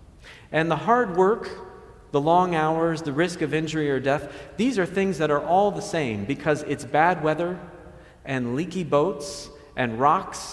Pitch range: 145-185 Hz